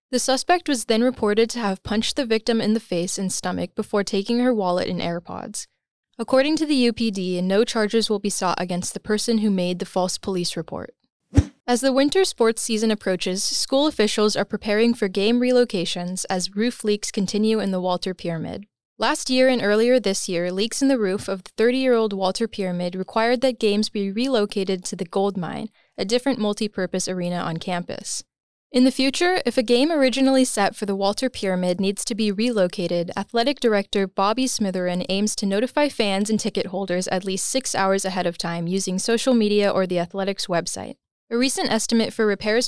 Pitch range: 190-240 Hz